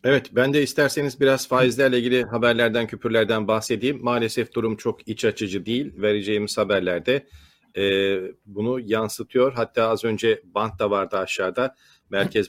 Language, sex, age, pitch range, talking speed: Turkish, male, 40-59, 110-135 Hz, 140 wpm